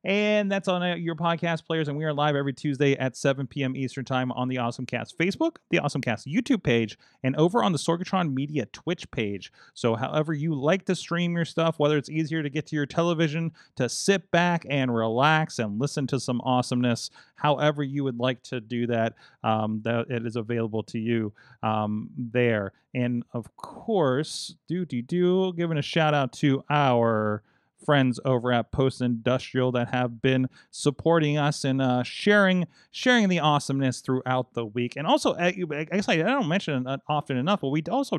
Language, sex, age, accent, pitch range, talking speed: English, male, 30-49, American, 120-160 Hz, 190 wpm